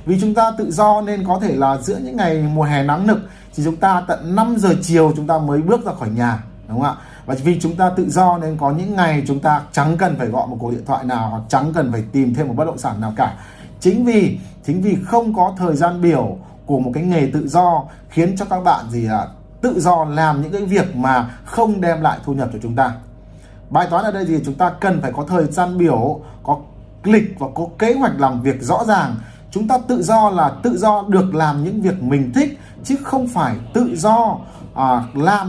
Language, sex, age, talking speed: Vietnamese, male, 20-39, 245 wpm